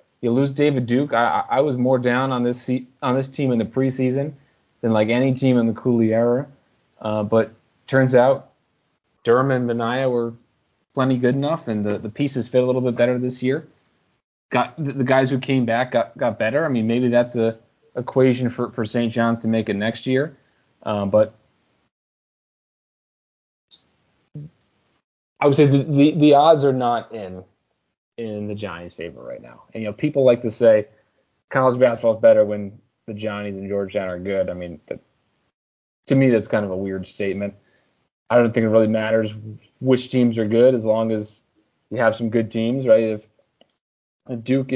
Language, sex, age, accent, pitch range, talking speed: English, male, 20-39, American, 110-130 Hz, 190 wpm